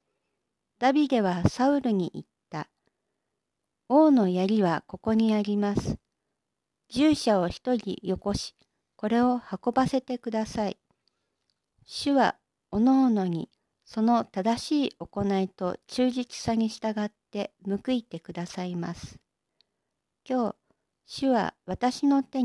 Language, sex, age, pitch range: Japanese, female, 50-69, 195-260 Hz